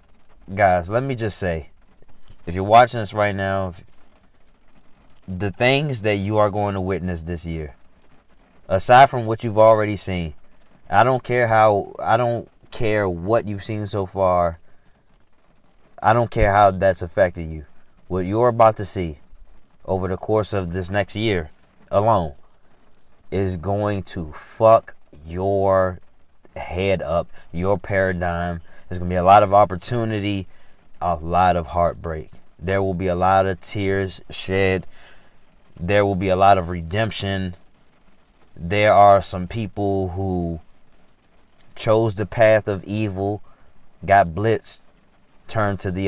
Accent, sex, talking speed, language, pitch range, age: American, male, 145 wpm, English, 90-105 Hz, 30-49